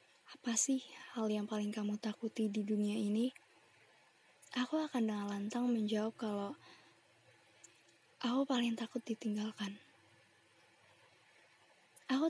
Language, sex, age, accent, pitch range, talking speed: Indonesian, female, 20-39, native, 215-245 Hz, 100 wpm